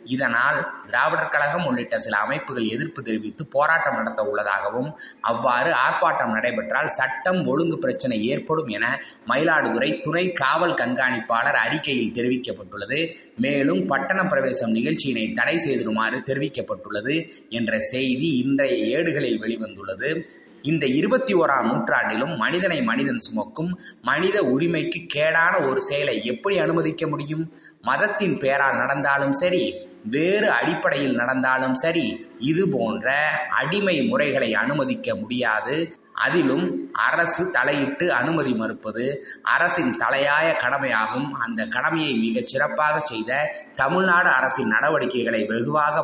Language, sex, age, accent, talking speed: Tamil, male, 20-39, native, 105 wpm